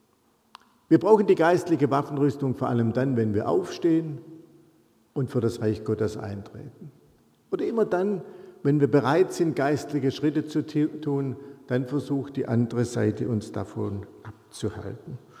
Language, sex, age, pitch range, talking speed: German, male, 50-69, 115-150 Hz, 140 wpm